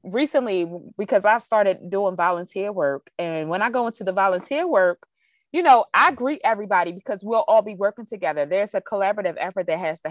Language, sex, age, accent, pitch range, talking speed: English, female, 20-39, American, 170-240 Hz, 195 wpm